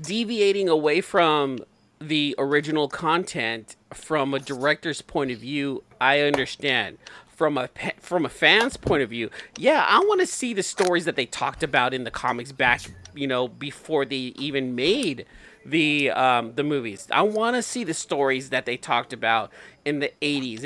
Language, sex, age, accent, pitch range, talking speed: English, male, 40-59, American, 135-170 Hz, 175 wpm